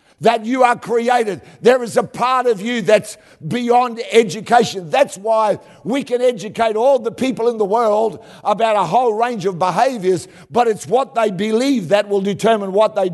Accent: Australian